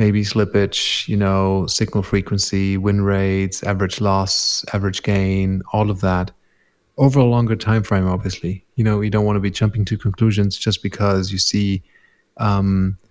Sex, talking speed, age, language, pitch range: male, 165 wpm, 30-49, English, 100-115 Hz